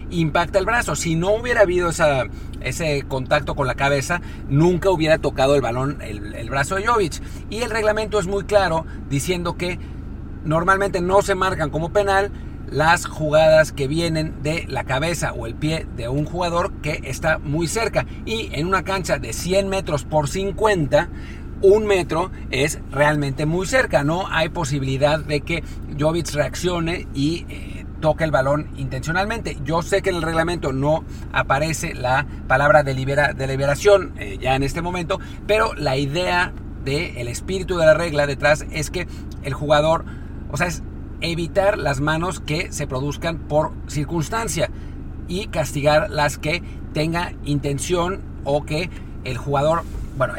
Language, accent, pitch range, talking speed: Spanish, Mexican, 140-180 Hz, 160 wpm